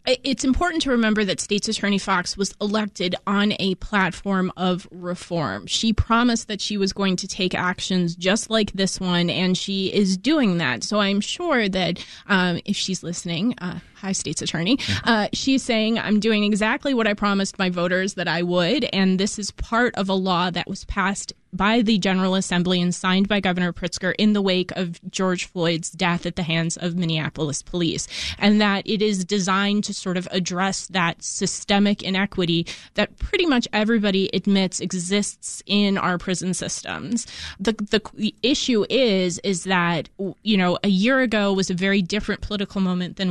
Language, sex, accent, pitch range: English, female, American, 180-210 Hz